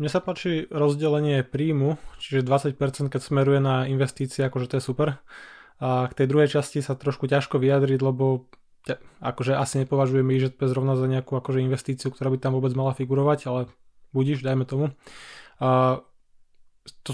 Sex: male